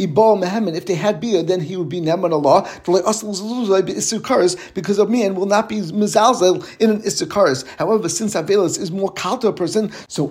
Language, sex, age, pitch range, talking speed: English, male, 50-69, 175-210 Hz, 150 wpm